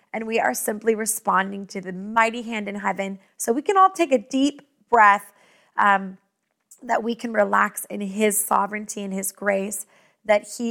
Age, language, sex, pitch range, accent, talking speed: 20-39, English, female, 210-295 Hz, American, 180 wpm